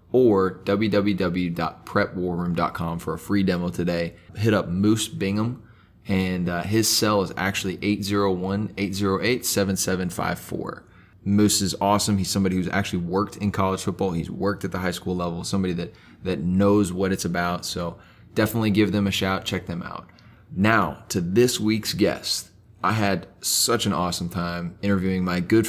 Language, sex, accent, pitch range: English, male, American, 90-105 Hz